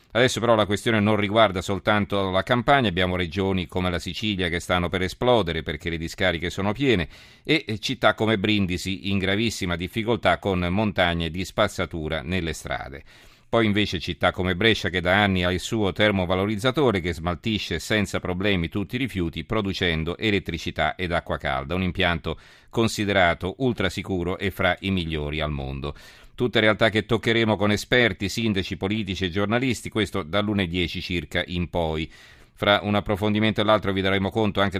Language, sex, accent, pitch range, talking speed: Italian, male, native, 90-105 Hz, 165 wpm